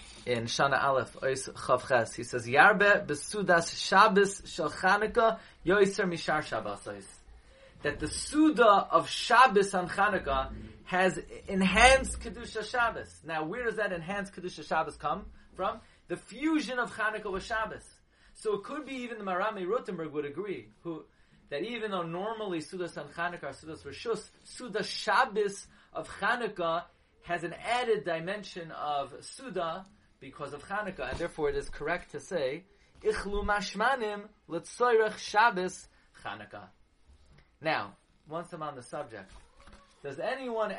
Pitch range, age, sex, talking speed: 135-210 Hz, 30-49, male, 120 wpm